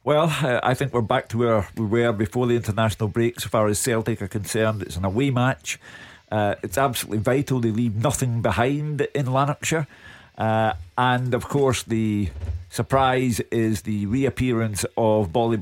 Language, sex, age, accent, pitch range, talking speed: English, male, 40-59, British, 105-125 Hz, 175 wpm